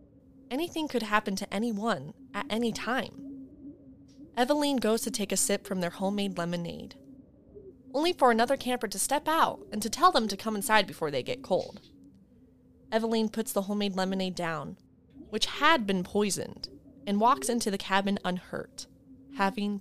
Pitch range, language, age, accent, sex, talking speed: 195-270 Hz, English, 20-39, American, female, 160 wpm